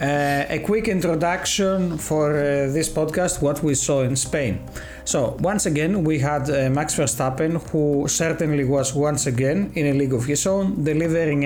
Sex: male